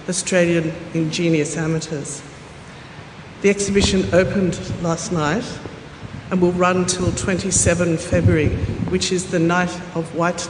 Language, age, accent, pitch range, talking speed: English, 50-69, Australian, 160-180 Hz, 115 wpm